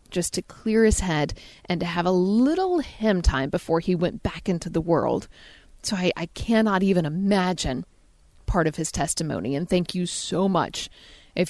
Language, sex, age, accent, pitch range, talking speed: English, female, 30-49, American, 175-215 Hz, 185 wpm